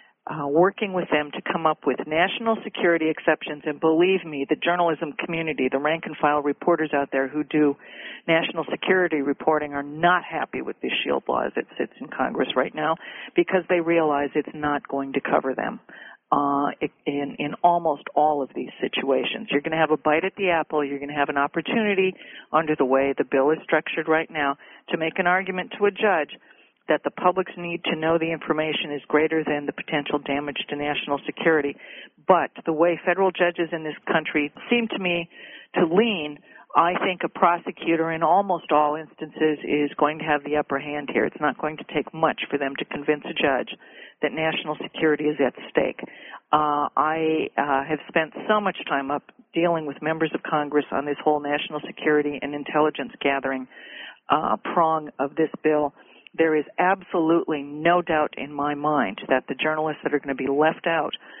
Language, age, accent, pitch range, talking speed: English, 50-69, American, 145-165 Hz, 195 wpm